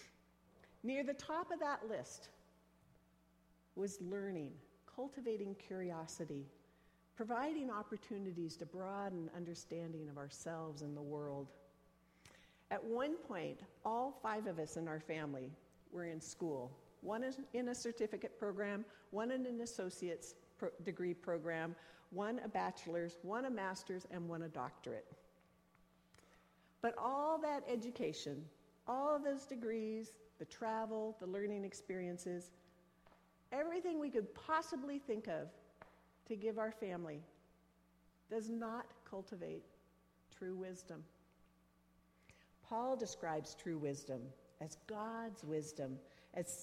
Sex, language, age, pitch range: female, English, 50-69, 155-225 Hz